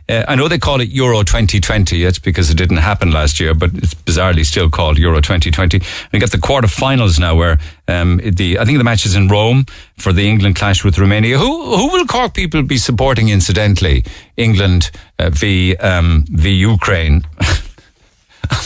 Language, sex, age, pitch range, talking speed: English, male, 50-69, 90-120 Hz, 185 wpm